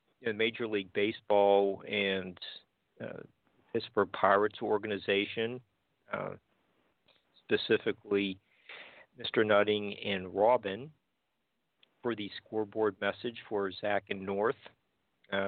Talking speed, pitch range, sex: 90 wpm, 100-110 Hz, male